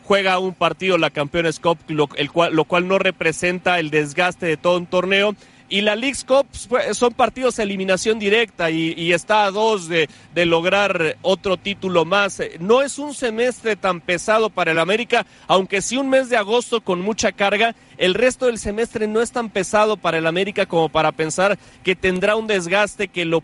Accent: Mexican